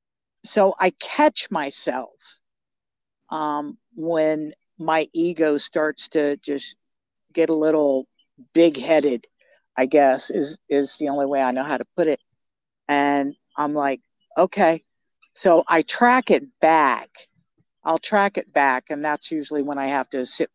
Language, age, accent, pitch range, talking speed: English, 50-69, American, 140-180 Hz, 145 wpm